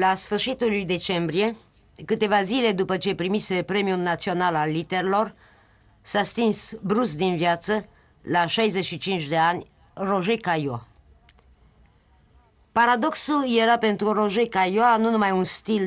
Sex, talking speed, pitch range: female, 125 wpm, 170-210 Hz